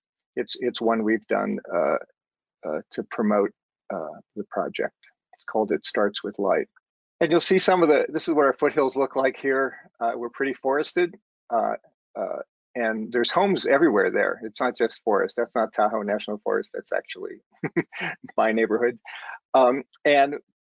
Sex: male